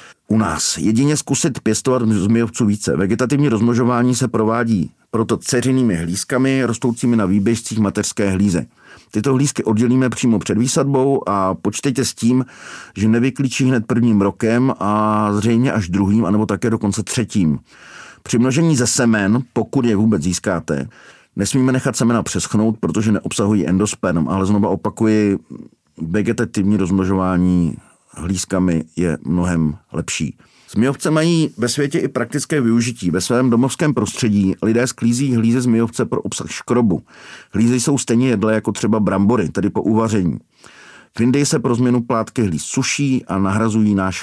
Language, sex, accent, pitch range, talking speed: Czech, male, native, 100-130 Hz, 140 wpm